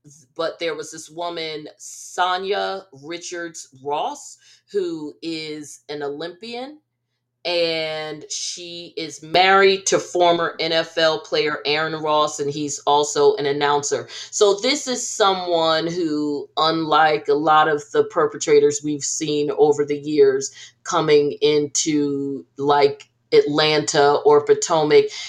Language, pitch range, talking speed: English, 150-215 Hz, 115 wpm